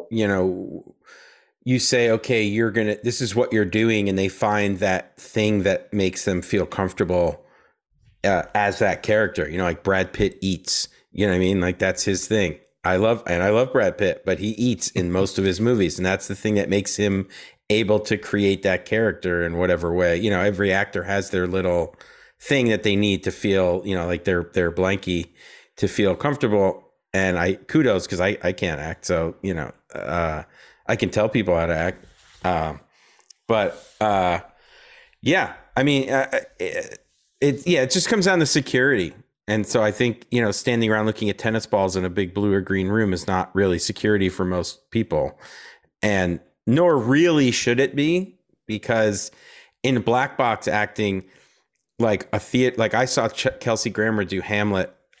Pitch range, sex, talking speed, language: 95-115 Hz, male, 190 wpm, English